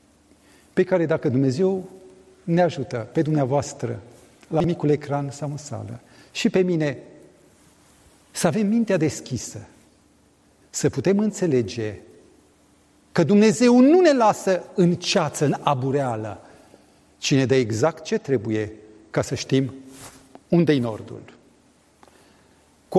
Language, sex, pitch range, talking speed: Romanian, male, 130-195 Hz, 115 wpm